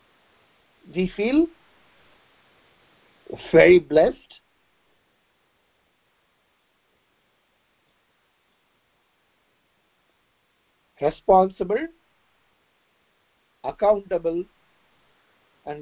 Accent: Indian